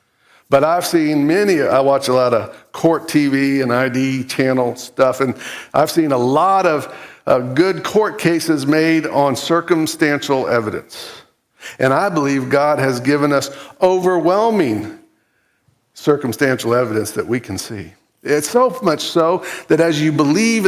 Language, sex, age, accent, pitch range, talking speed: English, male, 50-69, American, 135-175 Hz, 150 wpm